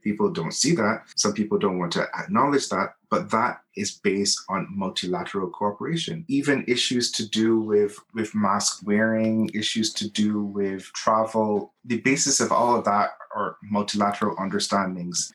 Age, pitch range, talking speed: 30-49, 100-135 Hz, 155 wpm